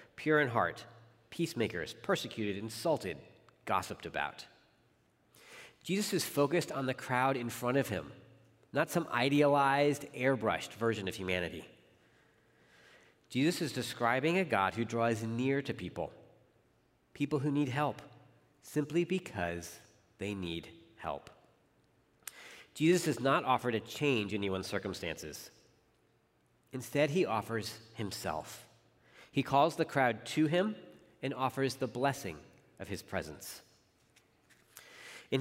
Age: 40-59